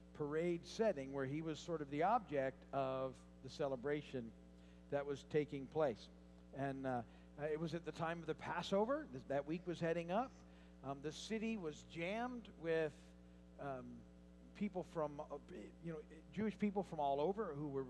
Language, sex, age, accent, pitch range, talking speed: English, male, 50-69, American, 115-175 Hz, 165 wpm